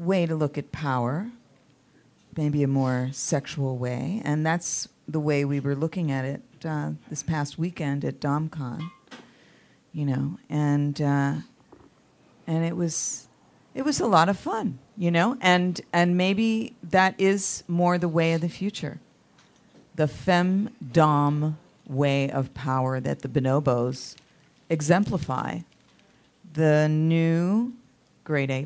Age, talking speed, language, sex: 40-59, 135 wpm, English, female